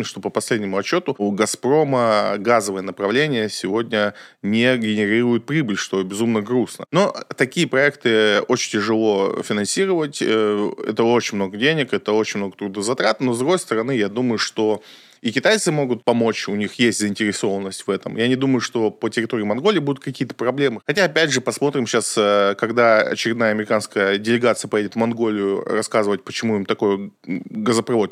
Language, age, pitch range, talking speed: Russian, 20-39, 105-125 Hz, 155 wpm